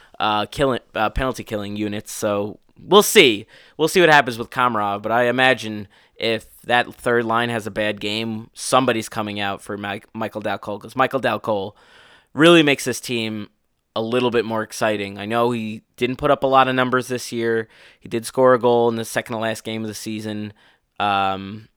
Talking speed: 200 wpm